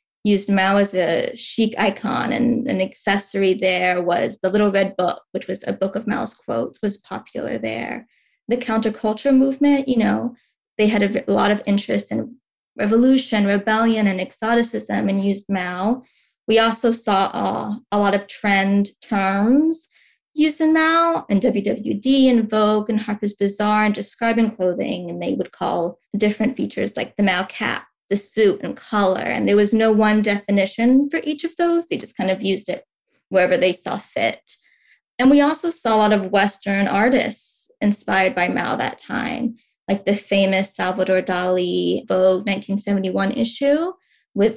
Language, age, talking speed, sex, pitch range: English, 20-39, 170 wpm, female, 190-235 Hz